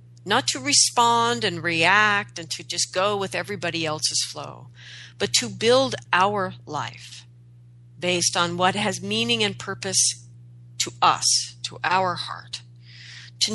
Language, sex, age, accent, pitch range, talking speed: English, female, 40-59, American, 120-185 Hz, 135 wpm